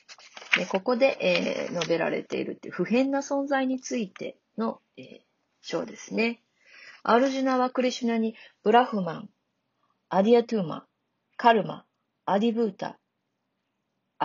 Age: 40-59